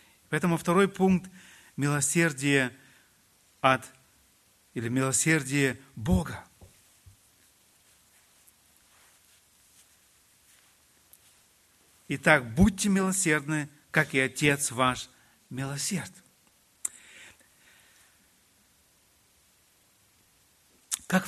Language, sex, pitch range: Russian, male, 125-185 Hz